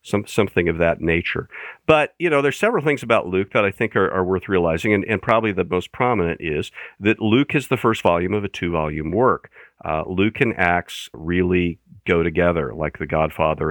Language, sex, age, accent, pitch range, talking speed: English, male, 50-69, American, 85-110 Hz, 205 wpm